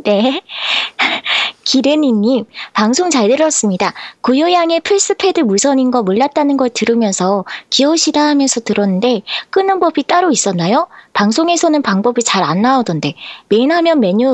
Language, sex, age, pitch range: Korean, female, 20-39, 215-310 Hz